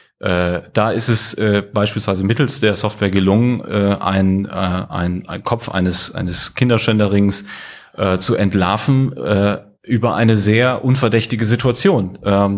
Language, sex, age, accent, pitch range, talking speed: German, male, 30-49, German, 100-115 Hz, 140 wpm